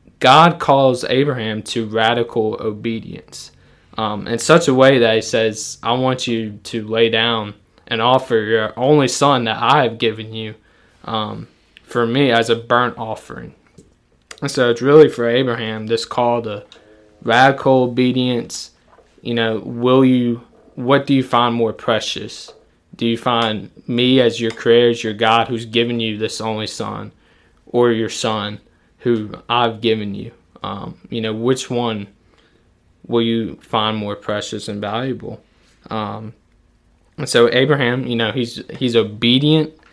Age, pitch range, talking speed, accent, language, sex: 20-39, 110-130 Hz, 155 wpm, American, English, male